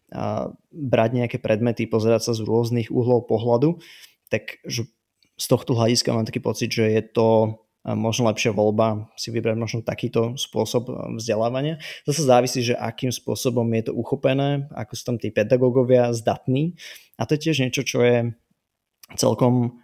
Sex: male